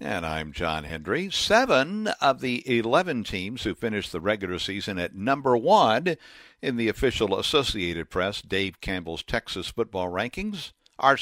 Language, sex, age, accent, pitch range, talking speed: English, male, 60-79, American, 105-150 Hz, 150 wpm